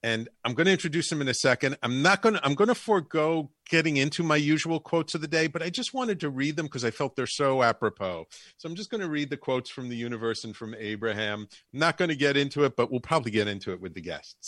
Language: English